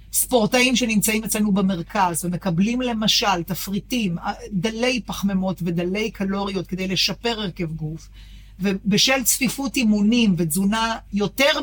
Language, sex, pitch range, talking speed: Hebrew, female, 180-230 Hz, 105 wpm